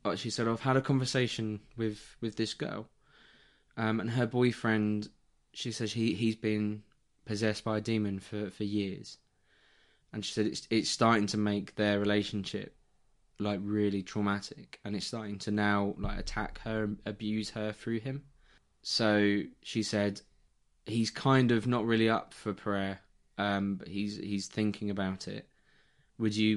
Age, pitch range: 20-39, 100-115 Hz